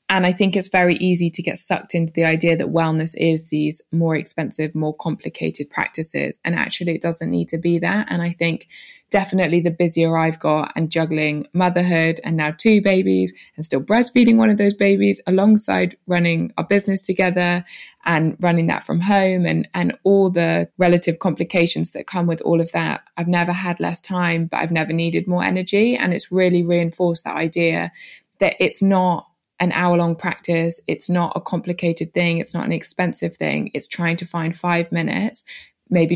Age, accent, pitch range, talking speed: 20-39, British, 160-180 Hz, 190 wpm